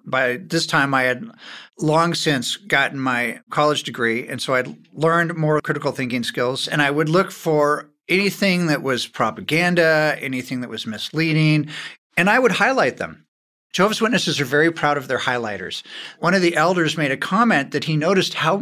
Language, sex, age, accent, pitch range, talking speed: English, male, 50-69, American, 145-185 Hz, 180 wpm